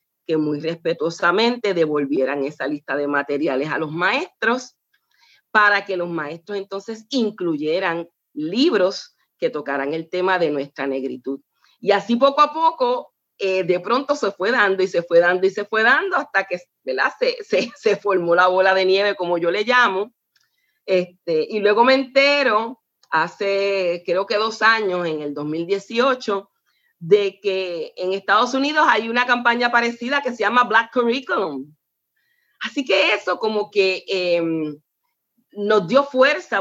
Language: Spanish